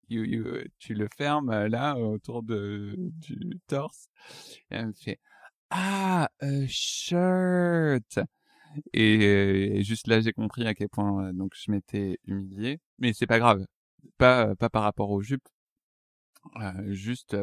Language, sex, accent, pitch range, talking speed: French, male, French, 100-120 Hz, 140 wpm